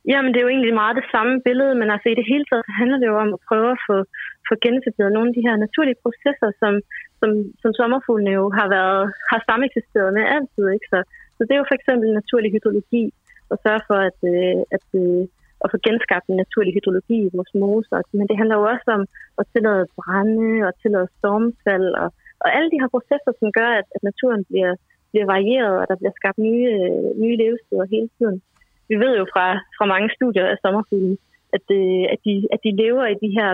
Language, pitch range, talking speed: Danish, 200-240 Hz, 215 wpm